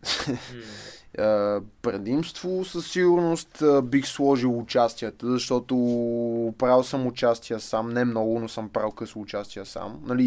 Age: 20-39